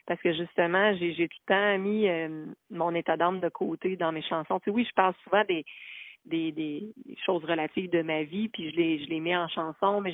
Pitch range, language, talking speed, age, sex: 165-195 Hz, French, 235 wpm, 30-49, female